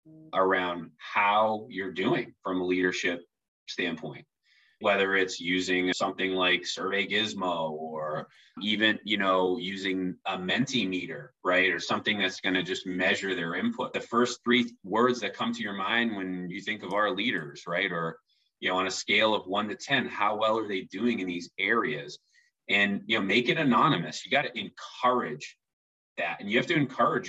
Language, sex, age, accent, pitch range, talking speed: English, male, 30-49, American, 90-120 Hz, 180 wpm